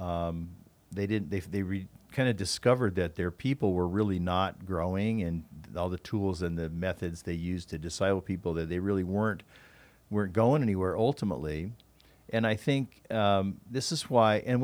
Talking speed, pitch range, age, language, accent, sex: 185 wpm, 95-120 Hz, 50-69, English, American, male